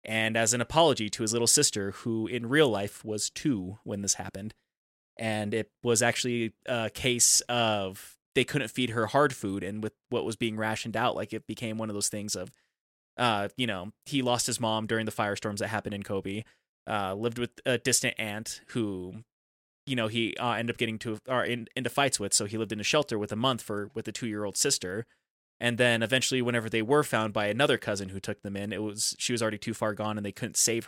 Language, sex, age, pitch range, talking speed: English, male, 20-39, 105-120 Hz, 230 wpm